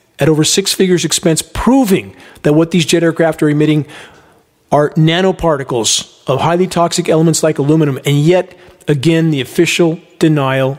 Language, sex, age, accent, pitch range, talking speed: English, male, 40-59, American, 145-170 Hz, 150 wpm